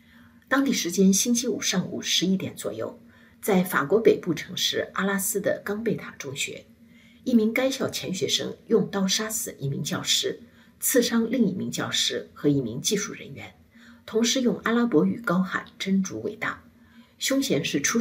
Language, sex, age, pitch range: Chinese, female, 50-69, 175-240 Hz